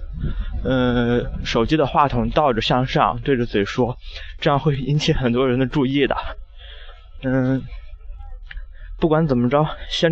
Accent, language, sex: native, Chinese, male